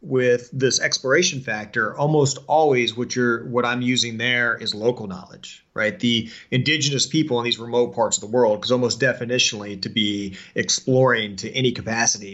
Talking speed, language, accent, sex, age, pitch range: 170 wpm, English, American, male, 30-49, 105-125 Hz